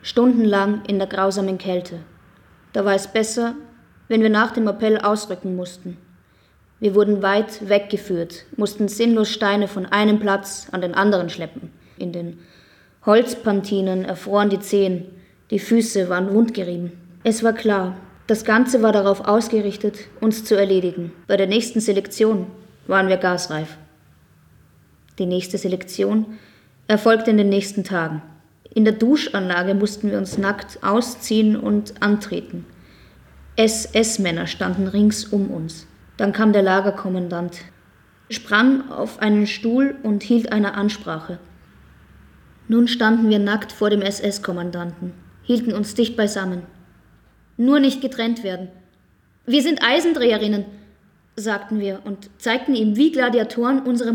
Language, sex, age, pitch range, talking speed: German, female, 20-39, 185-220 Hz, 130 wpm